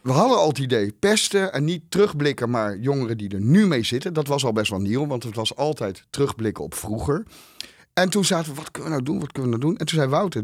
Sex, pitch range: male, 115-160 Hz